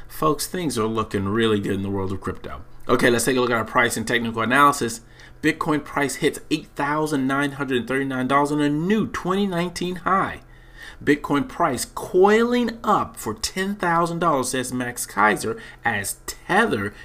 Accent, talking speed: American, 150 wpm